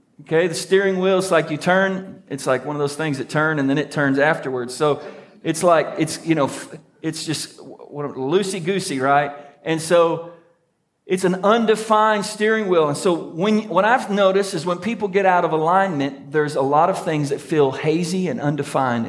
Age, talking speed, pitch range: 40-59, 190 wpm, 145-195 Hz